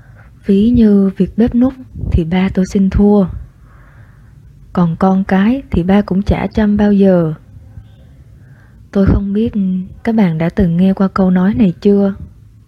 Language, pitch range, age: Vietnamese, 125-205 Hz, 20-39